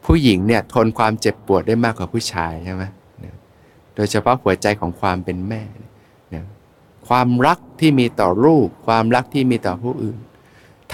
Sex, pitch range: male, 100-125 Hz